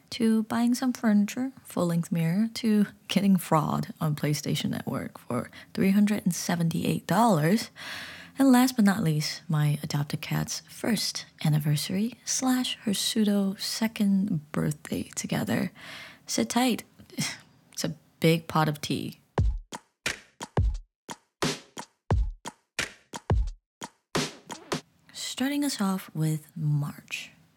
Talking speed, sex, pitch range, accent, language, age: 95 wpm, female, 155-220 Hz, American, English, 20-39